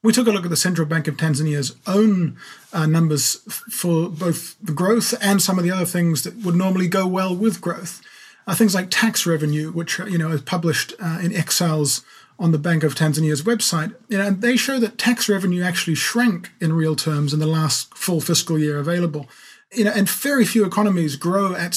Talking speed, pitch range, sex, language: 210 wpm, 160-205 Hz, male, English